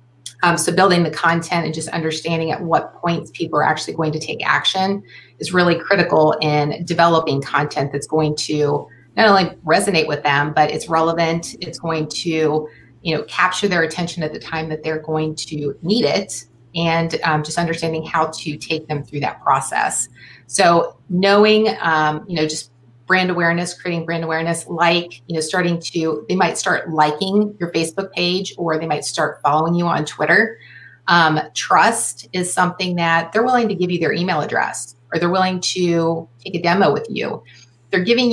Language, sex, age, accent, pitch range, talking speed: English, female, 30-49, American, 155-180 Hz, 185 wpm